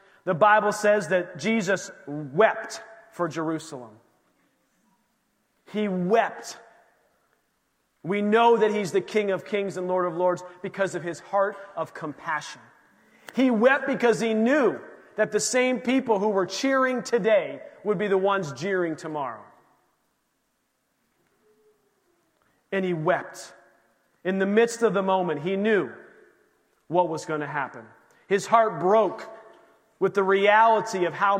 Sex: male